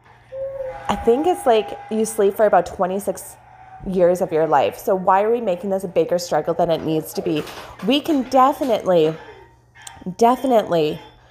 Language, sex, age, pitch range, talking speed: English, female, 20-39, 185-255 Hz, 165 wpm